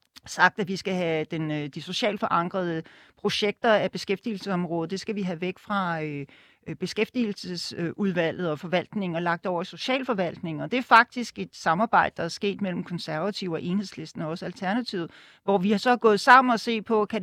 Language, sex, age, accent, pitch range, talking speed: Danish, male, 40-59, native, 170-220 Hz, 185 wpm